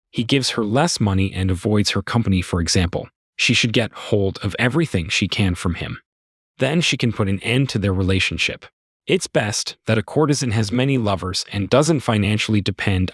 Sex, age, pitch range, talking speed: male, 30-49, 100-140 Hz, 190 wpm